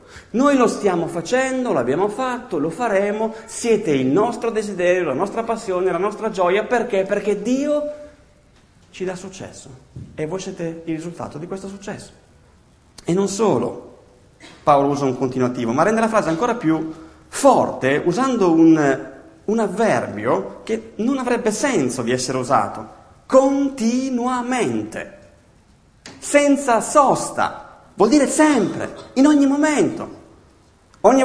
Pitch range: 175-255 Hz